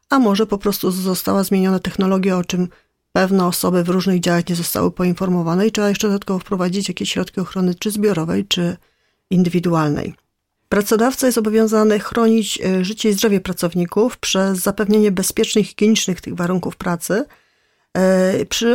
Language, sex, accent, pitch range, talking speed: Polish, female, native, 180-210 Hz, 145 wpm